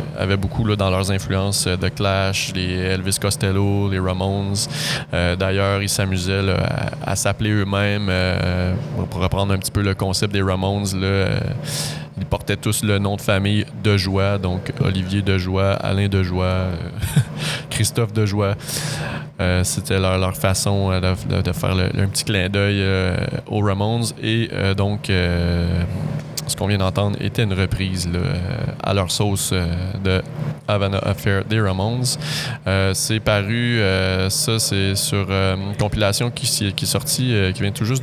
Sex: male